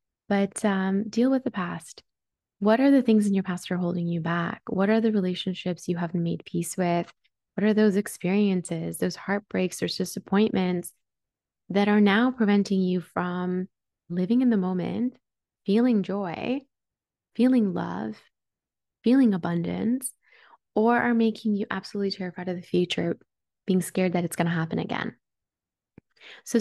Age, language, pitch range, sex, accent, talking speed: 20-39, English, 170-215 Hz, female, American, 155 wpm